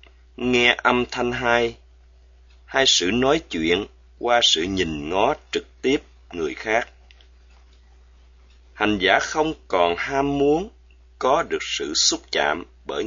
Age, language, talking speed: 30-49, Vietnamese, 130 wpm